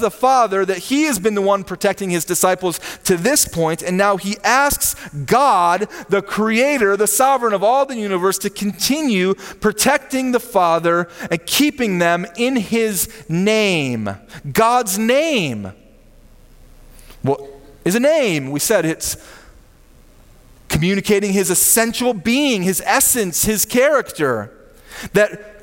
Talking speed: 130 wpm